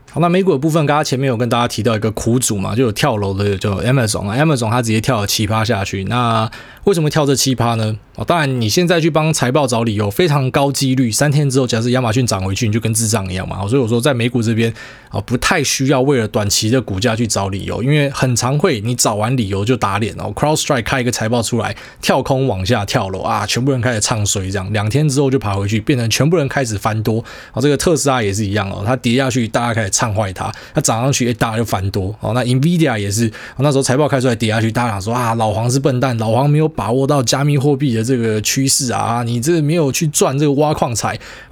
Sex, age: male, 20-39